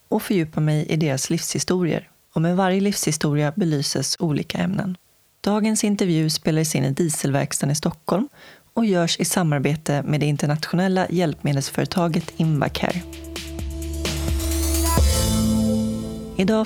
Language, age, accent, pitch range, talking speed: Swedish, 30-49, native, 145-180 Hz, 115 wpm